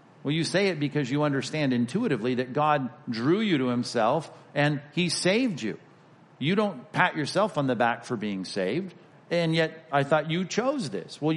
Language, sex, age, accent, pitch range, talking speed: English, male, 50-69, American, 130-165 Hz, 190 wpm